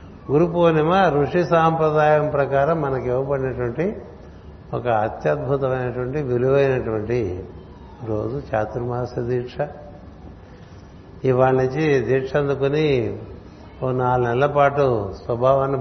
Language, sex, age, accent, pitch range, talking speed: Telugu, male, 60-79, native, 95-140 Hz, 85 wpm